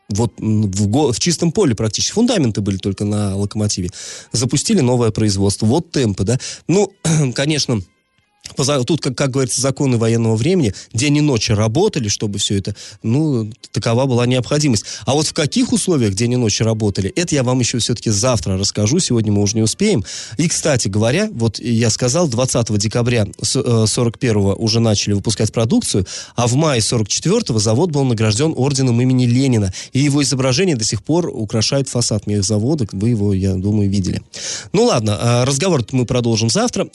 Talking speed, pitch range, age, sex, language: 165 wpm, 110-150 Hz, 20-39, male, Russian